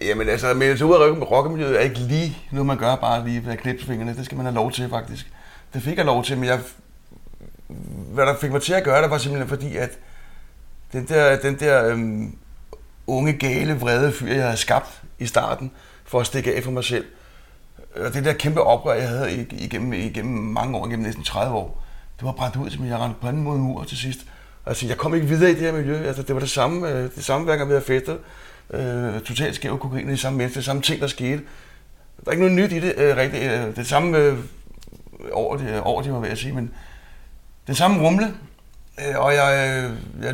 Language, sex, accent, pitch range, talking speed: Danish, male, native, 120-145 Hz, 220 wpm